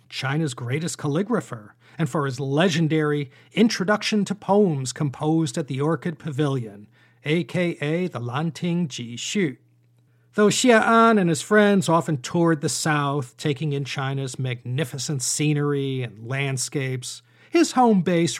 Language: English